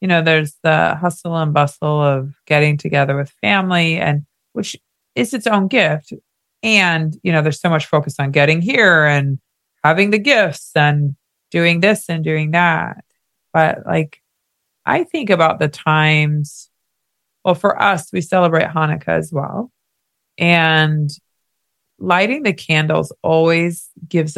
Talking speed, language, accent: 145 wpm, English, American